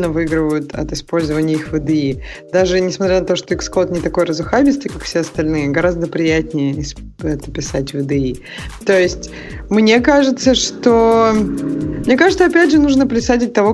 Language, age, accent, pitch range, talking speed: Russian, 20-39, native, 170-220 Hz, 155 wpm